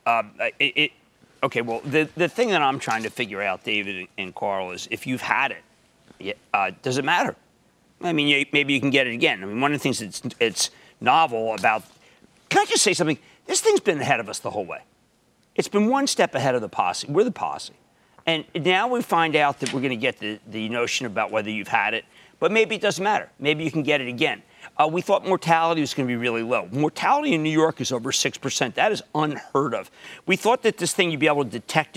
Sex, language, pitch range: male, English, 125-170 Hz